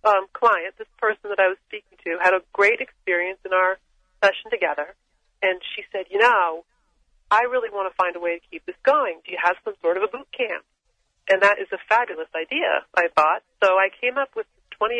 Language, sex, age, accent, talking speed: English, female, 40-59, American, 225 wpm